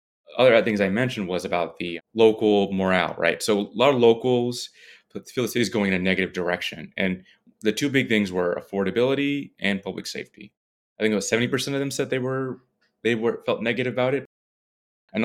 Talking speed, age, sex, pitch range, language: 200 wpm, 30-49, male, 95-115 Hz, English